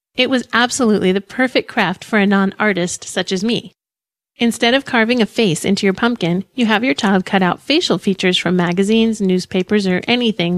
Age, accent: 30-49, American